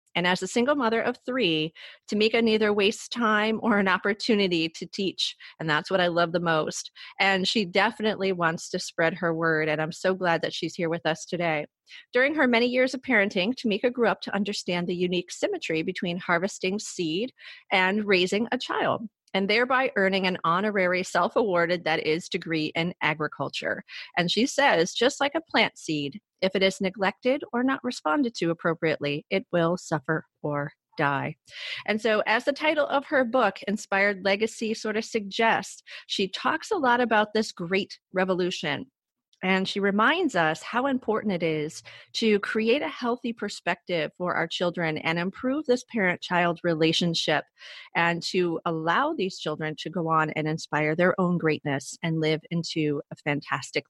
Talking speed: 175 wpm